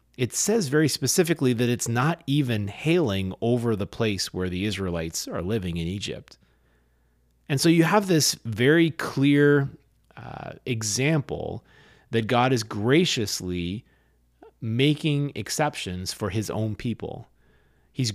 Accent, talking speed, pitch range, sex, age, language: American, 130 wpm, 95-140 Hz, male, 30-49, English